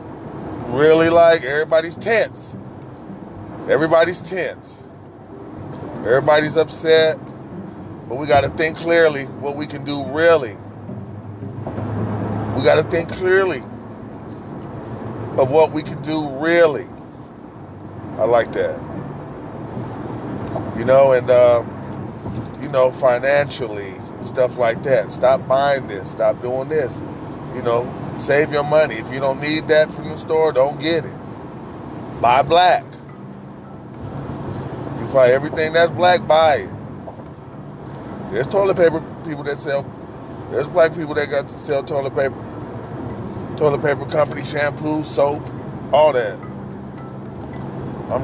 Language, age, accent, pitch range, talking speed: English, 30-49, American, 120-155 Hz, 120 wpm